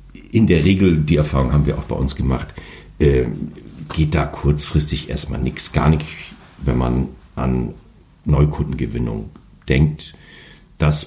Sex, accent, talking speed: male, German, 130 wpm